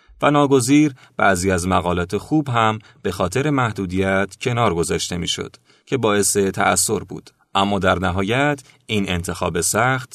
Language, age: Persian, 30-49